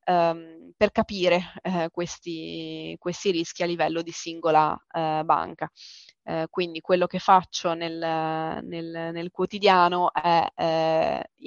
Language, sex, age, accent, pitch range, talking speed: Italian, female, 20-39, native, 165-185 Hz, 120 wpm